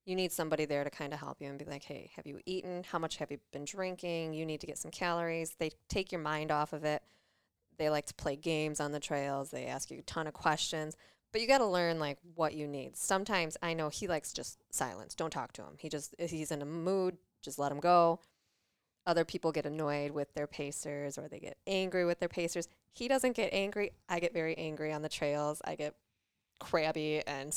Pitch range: 150-175 Hz